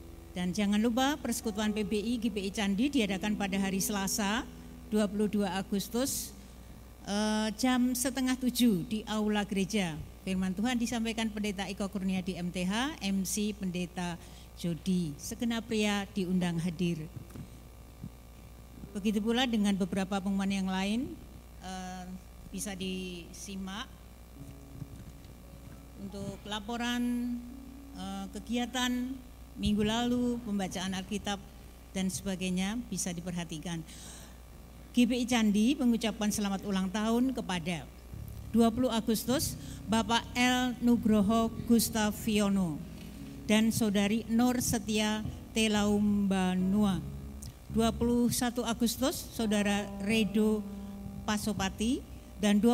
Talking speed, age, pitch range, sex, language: 90 wpm, 50-69, 190-230 Hz, female, Indonesian